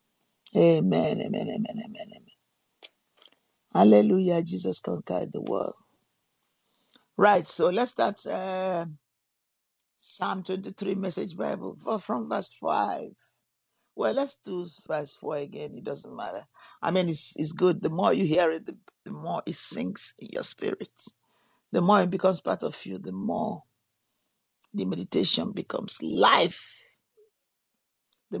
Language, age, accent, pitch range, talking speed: English, 50-69, Nigerian, 150-210 Hz, 130 wpm